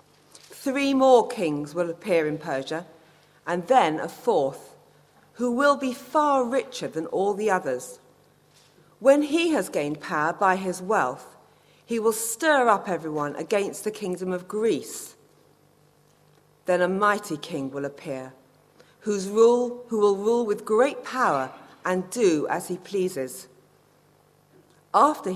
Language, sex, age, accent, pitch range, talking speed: English, female, 40-59, British, 170-240 Hz, 135 wpm